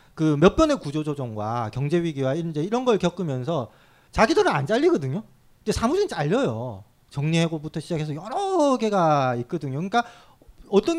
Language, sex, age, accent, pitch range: Korean, male, 40-59, native, 155-250 Hz